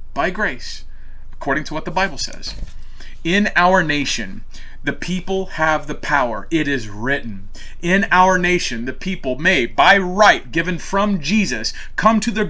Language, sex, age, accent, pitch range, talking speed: English, male, 30-49, American, 110-180 Hz, 160 wpm